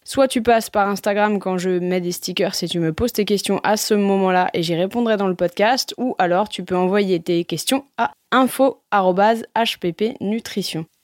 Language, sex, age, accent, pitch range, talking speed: French, female, 20-39, French, 185-240 Hz, 185 wpm